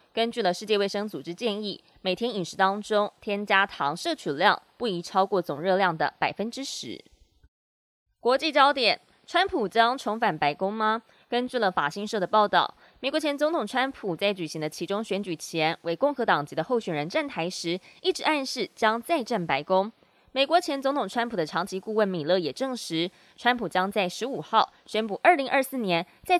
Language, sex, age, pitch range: Chinese, female, 20-39, 175-250 Hz